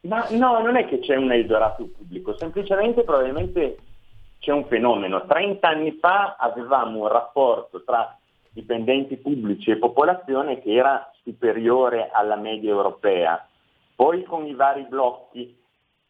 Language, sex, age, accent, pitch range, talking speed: Italian, male, 40-59, native, 105-140 Hz, 135 wpm